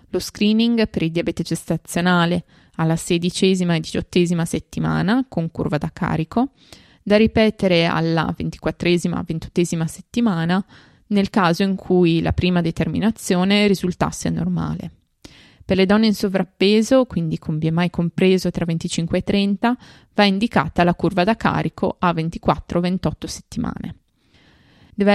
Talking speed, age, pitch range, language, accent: 130 wpm, 20-39, 170-210 Hz, Italian, native